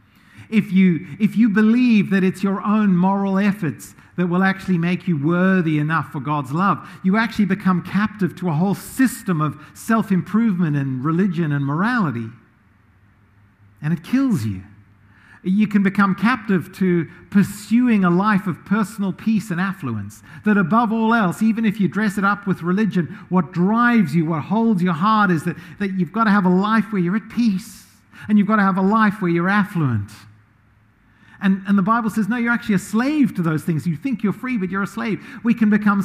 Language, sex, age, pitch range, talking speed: English, male, 50-69, 135-205 Hz, 195 wpm